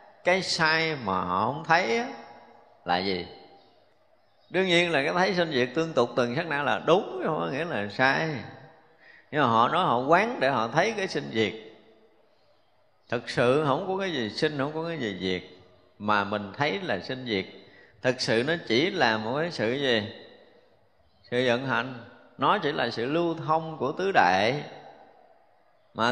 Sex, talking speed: male, 180 wpm